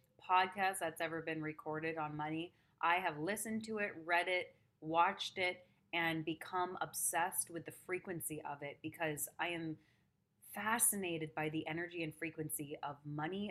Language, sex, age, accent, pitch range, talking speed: English, female, 30-49, American, 155-180 Hz, 155 wpm